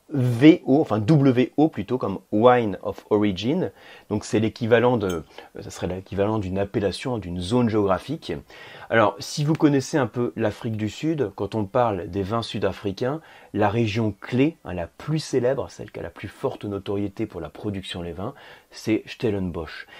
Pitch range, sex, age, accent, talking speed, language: 95-125 Hz, male, 30-49, French, 170 wpm, French